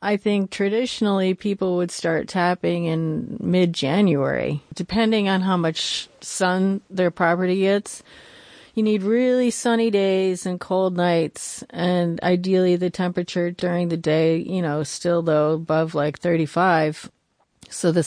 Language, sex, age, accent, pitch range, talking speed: English, female, 40-59, American, 160-205 Hz, 135 wpm